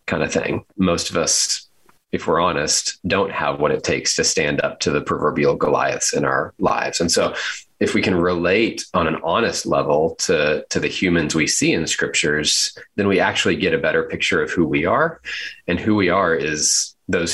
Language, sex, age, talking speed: English, male, 30-49, 210 wpm